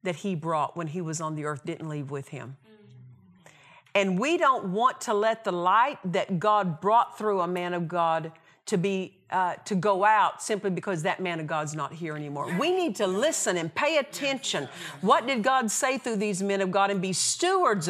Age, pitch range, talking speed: 50-69, 170-235 Hz, 210 wpm